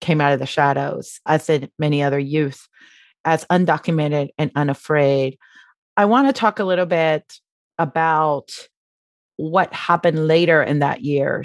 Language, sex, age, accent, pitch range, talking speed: English, female, 30-49, American, 150-180 Hz, 145 wpm